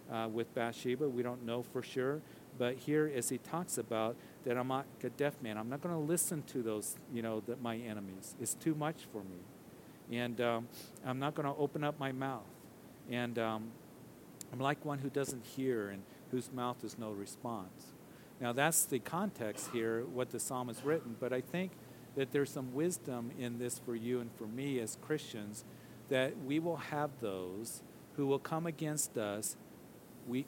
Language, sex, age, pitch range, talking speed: English, male, 50-69, 120-140 Hz, 195 wpm